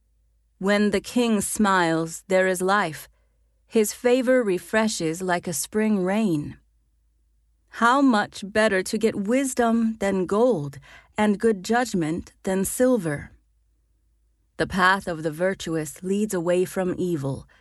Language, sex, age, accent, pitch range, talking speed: English, female, 30-49, American, 145-215 Hz, 125 wpm